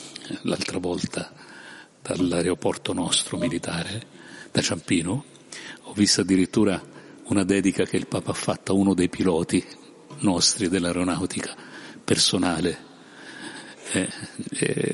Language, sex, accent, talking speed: Italian, male, native, 105 wpm